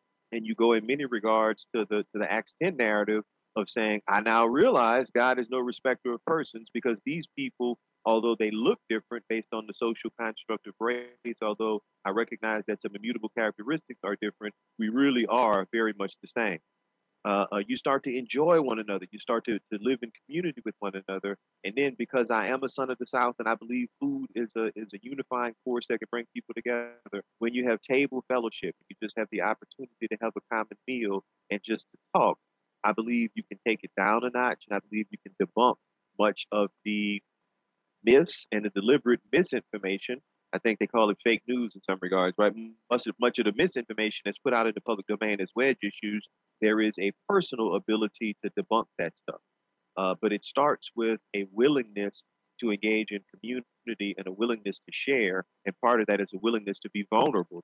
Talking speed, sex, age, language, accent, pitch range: 210 wpm, male, 40-59, English, American, 105-120 Hz